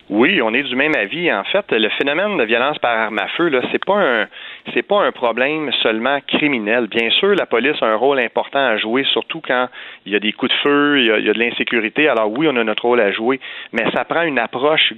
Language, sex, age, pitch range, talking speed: French, male, 40-59, 110-135 Hz, 265 wpm